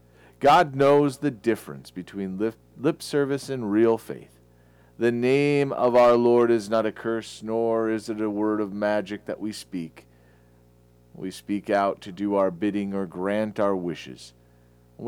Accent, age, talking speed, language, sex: American, 40-59, 165 wpm, English, male